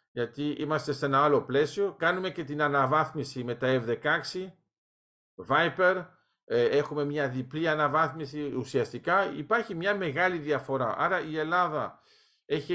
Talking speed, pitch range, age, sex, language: 125 wpm, 130-170 Hz, 50-69, male, Greek